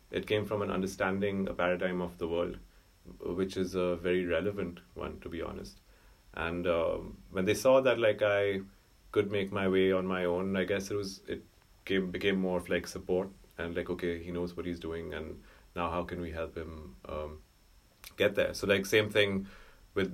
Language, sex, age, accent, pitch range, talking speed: English, male, 30-49, Indian, 85-100 Hz, 205 wpm